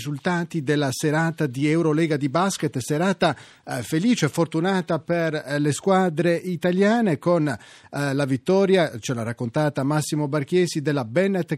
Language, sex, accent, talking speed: Italian, male, native, 130 wpm